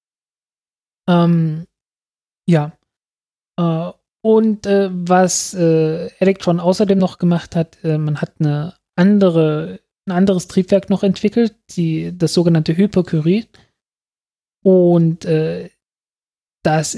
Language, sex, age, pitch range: German, male, 20-39, 155-180 Hz